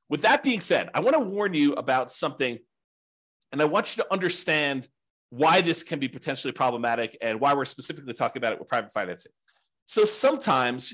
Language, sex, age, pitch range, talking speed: English, male, 40-59, 125-170 Hz, 190 wpm